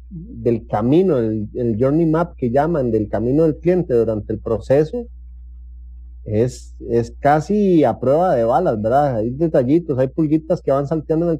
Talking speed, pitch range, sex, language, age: 170 wpm, 120-165 Hz, male, English, 30-49